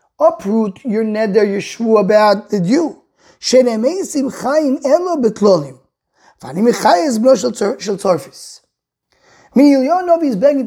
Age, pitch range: 30-49, 205-270 Hz